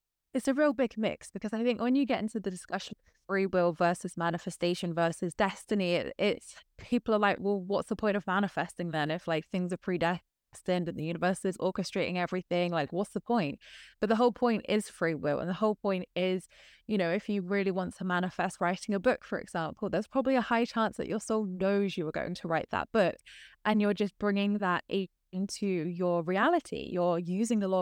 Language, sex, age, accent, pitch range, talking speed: English, female, 20-39, British, 180-220 Hz, 215 wpm